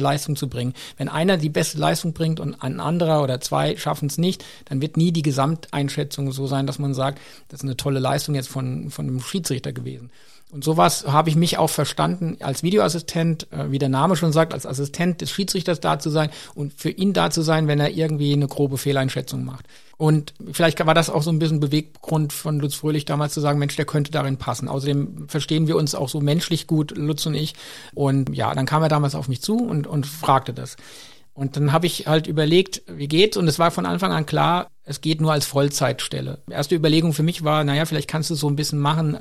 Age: 50-69